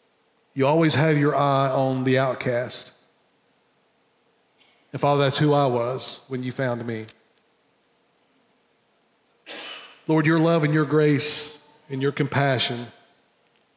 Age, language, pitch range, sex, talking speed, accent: 40-59, English, 130-155 Hz, male, 120 wpm, American